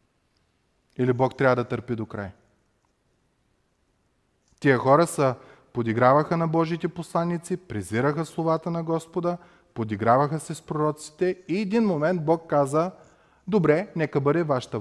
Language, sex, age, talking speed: Bulgarian, male, 30-49, 125 wpm